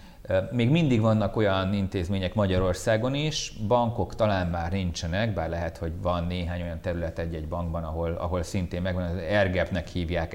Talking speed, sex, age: 155 wpm, male, 30-49